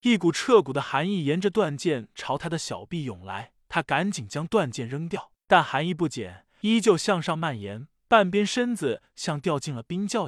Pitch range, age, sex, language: 145-200 Hz, 20-39, male, Chinese